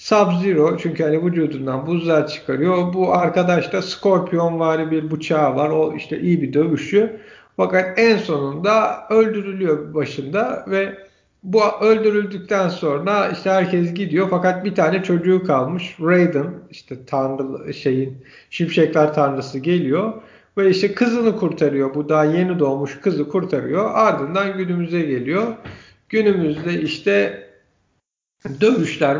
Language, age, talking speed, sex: Turkish, 50-69, 120 wpm, male